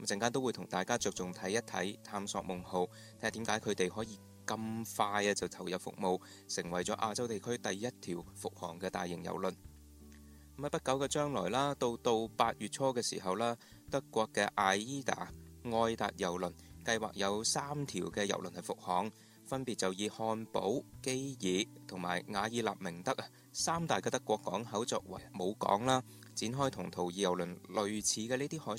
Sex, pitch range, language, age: male, 90-120 Hz, Chinese, 20-39